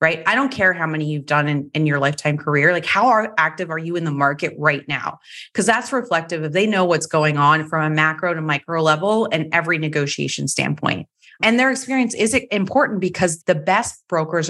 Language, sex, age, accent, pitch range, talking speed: English, female, 30-49, American, 155-185 Hz, 215 wpm